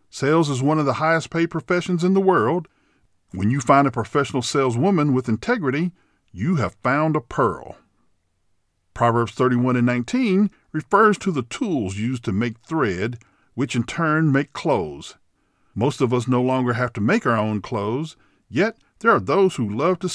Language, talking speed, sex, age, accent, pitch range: English, 175 wpm, male, 50-69, American, 110-160 Hz